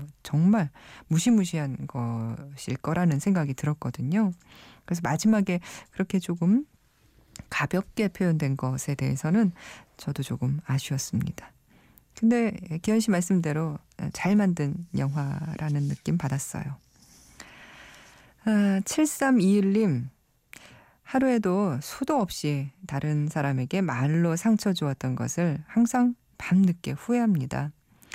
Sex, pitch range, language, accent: female, 130-190 Hz, Korean, native